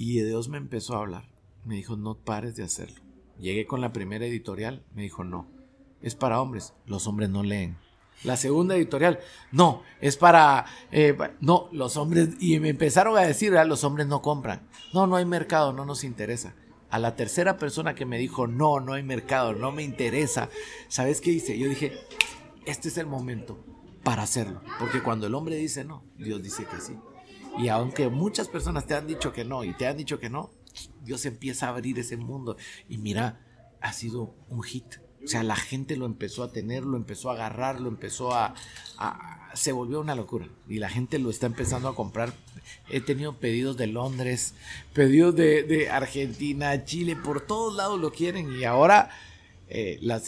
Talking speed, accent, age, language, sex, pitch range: 195 wpm, Mexican, 50-69, Spanish, male, 115-145 Hz